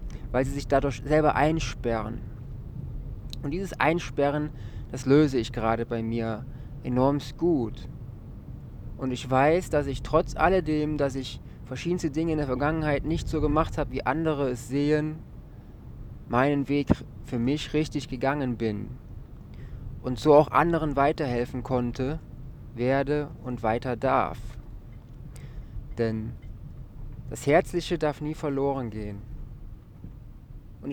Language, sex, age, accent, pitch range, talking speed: German, male, 20-39, German, 120-150 Hz, 125 wpm